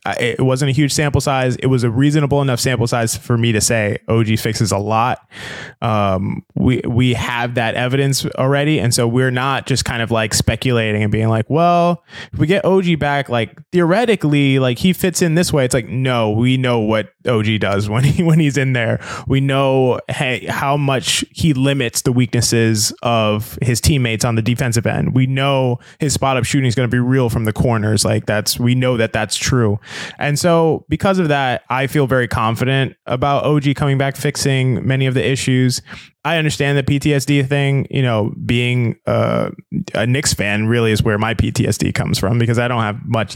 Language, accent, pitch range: English, American, 115-140 Hz